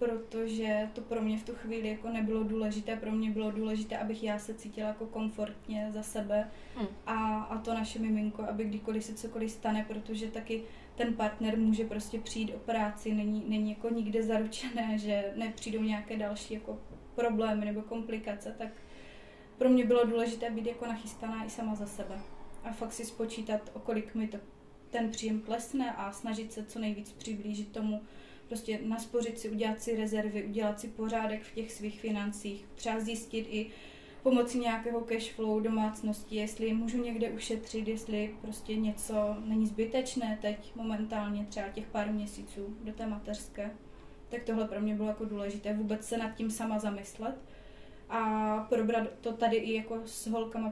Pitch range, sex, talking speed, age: 215-230 Hz, female, 170 wpm, 20-39